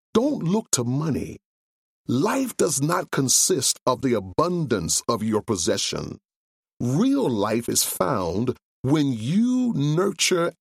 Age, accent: 40-59, American